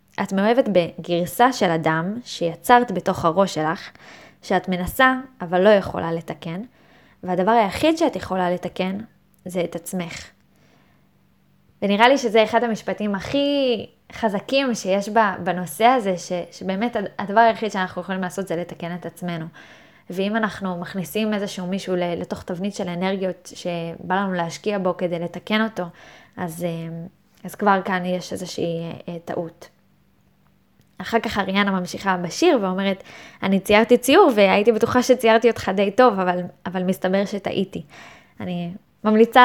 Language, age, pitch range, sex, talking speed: Hebrew, 20-39, 180-210 Hz, female, 135 wpm